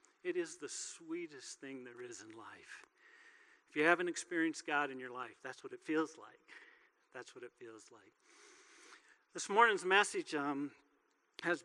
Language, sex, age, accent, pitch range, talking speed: English, male, 50-69, American, 145-195 Hz, 165 wpm